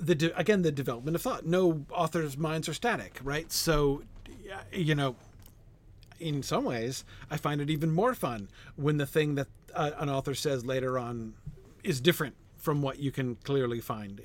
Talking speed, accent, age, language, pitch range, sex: 180 wpm, American, 40-59, English, 120-155 Hz, male